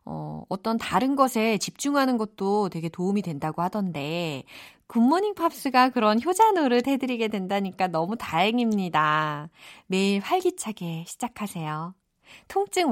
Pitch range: 180-295 Hz